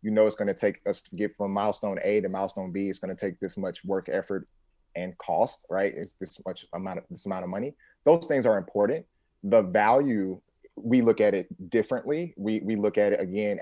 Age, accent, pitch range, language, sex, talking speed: 30-49, American, 100-110 Hz, English, male, 230 wpm